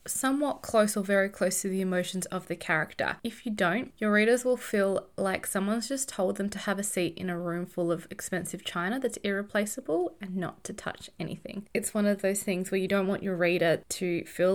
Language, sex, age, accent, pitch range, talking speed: English, female, 20-39, Australian, 175-220 Hz, 225 wpm